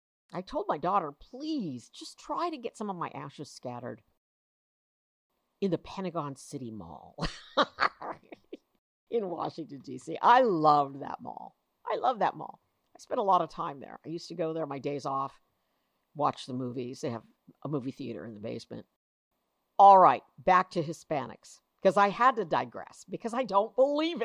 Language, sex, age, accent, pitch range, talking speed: English, female, 50-69, American, 145-240 Hz, 175 wpm